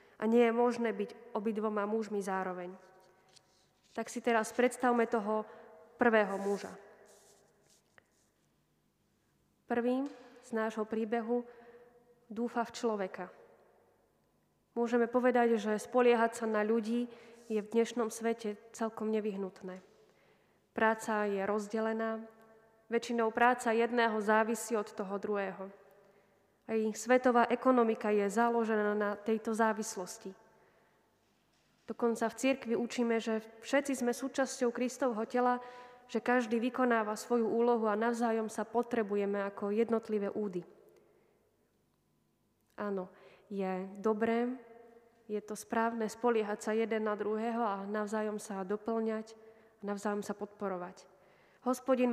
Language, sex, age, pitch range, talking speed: Slovak, female, 20-39, 205-235 Hz, 110 wpm